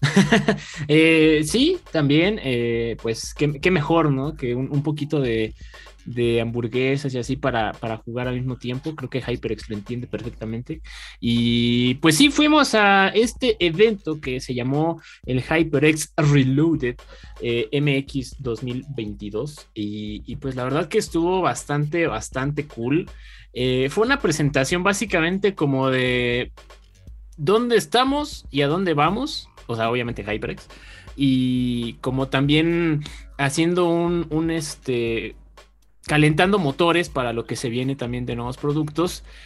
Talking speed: 135 wpm